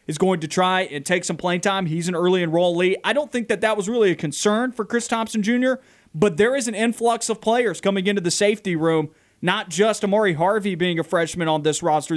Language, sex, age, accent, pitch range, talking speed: English, male, 30-49, American, 165-225 Hz, 235 wpm